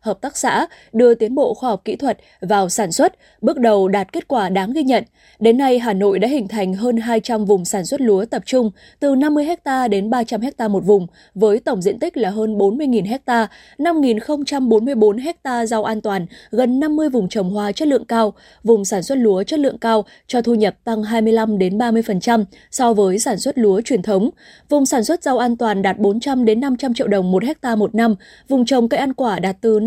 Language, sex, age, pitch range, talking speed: Vietnamese, female, 20-39, 205-260 Hz, 245 wpm